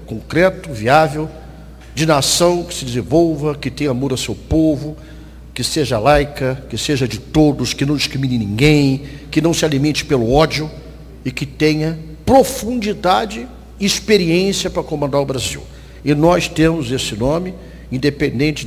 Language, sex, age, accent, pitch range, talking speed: Portuguese, male, 60-79, Brazilian, 130-165 Hz, 150 wpm